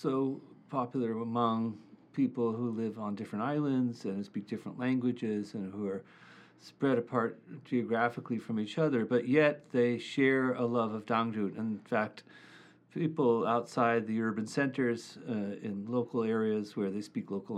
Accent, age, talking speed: American, 40-59, 155 wpm